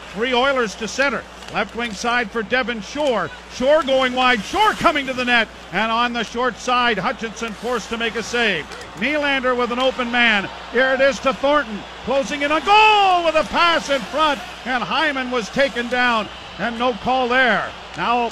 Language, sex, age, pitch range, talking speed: English, male, 50-69, 225-265 Hz, 190 wpm